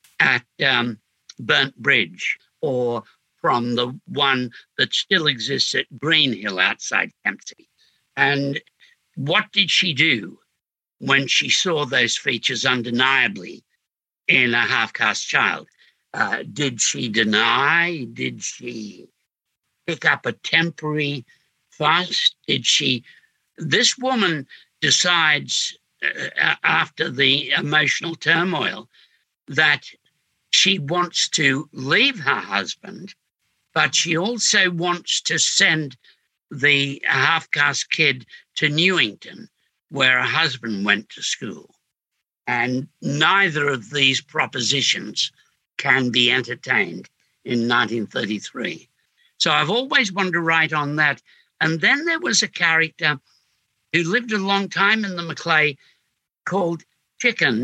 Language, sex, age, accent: English, male, 60-79, British